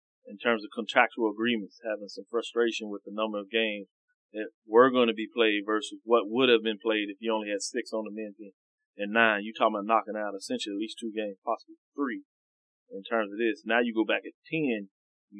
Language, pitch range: English, 105-130 Hz